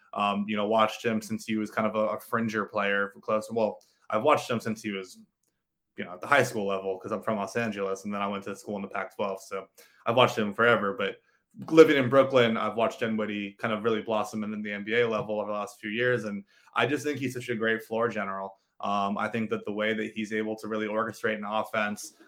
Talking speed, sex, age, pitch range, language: 250 wpm, male, 20-39, 105-115 Hz, English